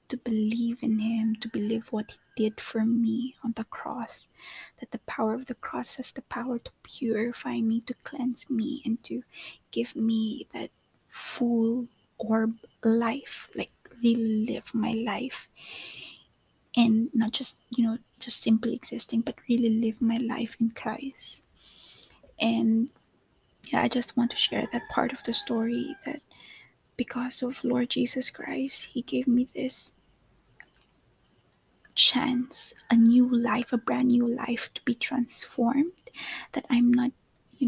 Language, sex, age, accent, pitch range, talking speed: English, female, 20-39, Filipino, 230-260 Hz, 150 wpm